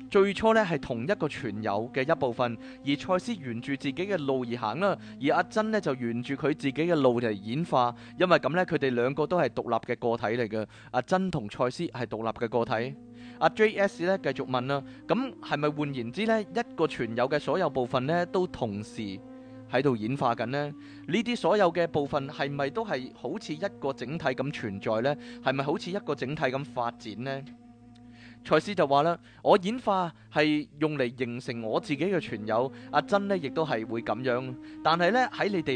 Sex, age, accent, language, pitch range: male, 20-39, native, Chinese, 120-170 Hz